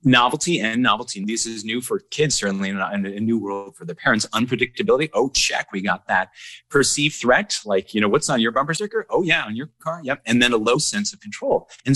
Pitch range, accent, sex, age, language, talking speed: 105-155 Hz, American, male, 30-49, English, 240 wpm